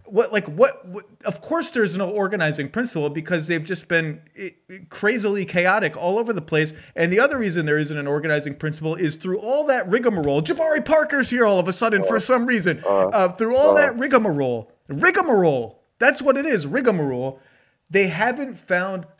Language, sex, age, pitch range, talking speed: English, male, 30-49, 140-195 Hz, 190 wpm